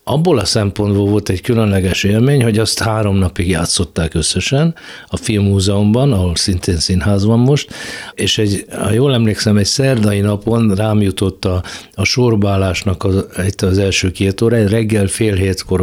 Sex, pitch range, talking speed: male, 95-110 Hz, 165 wpm